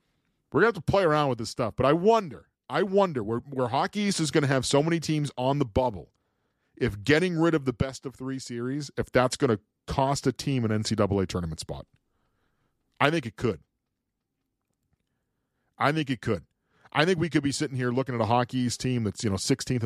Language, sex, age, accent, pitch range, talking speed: English, male, 40-59, American, 115-140 Hz, 225 wpm